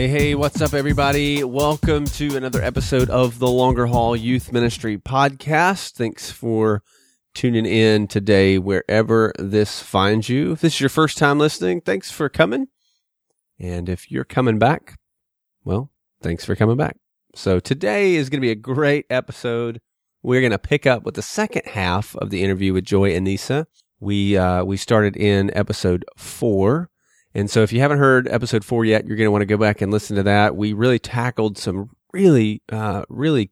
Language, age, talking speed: English, 30-49, 185 wpm